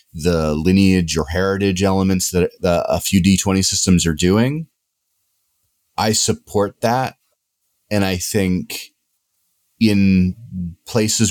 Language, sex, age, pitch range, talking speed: English, male, 30-49, 90-110 Hz, 105 wpm